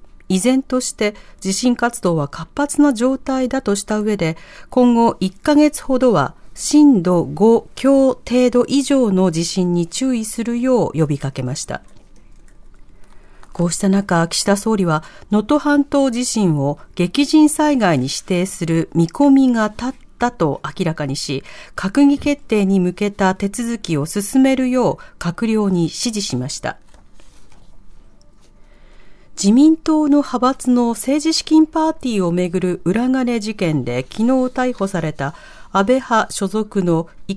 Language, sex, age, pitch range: Japanese, female, 40-59, 175-260 Hz